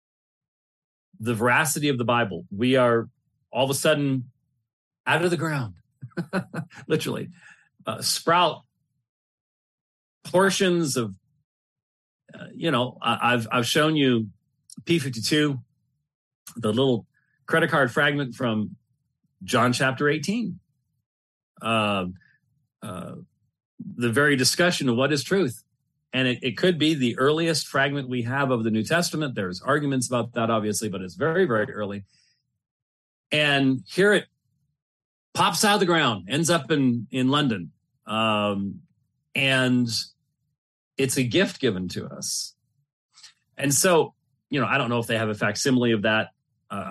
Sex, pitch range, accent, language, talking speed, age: male, 115-145 Hz, American, English, 135 wpm, 40-59